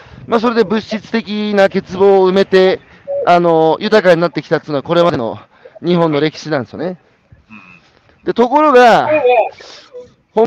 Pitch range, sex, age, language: 160-225 Hz, male, 40-59, Japanese